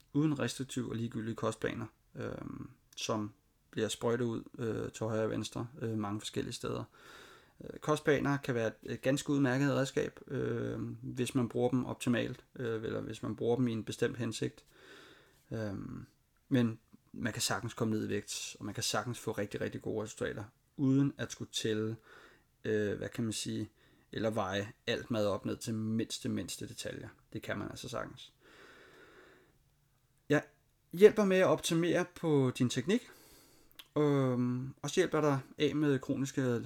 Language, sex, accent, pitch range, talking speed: Danish, male, native, 115-140 Hz, 150 wpm